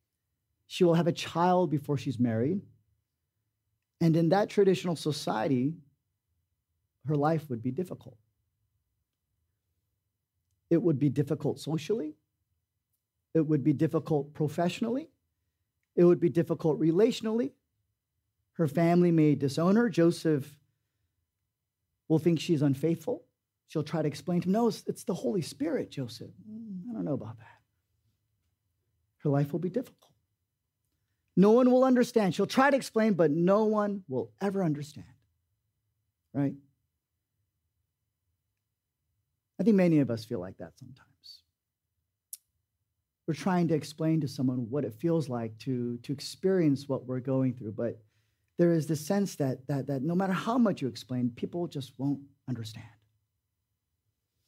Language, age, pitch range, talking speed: English, 40-59, 105-170 Hz, 135 wpm